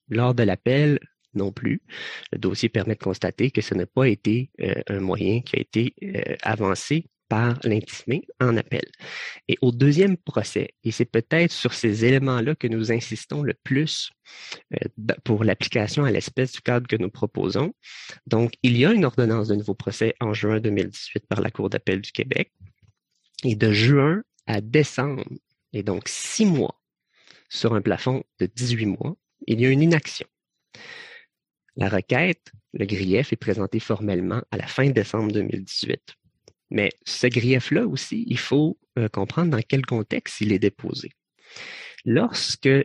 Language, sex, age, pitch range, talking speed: English, male, 30-49, 110-135 Hz, 165 wpm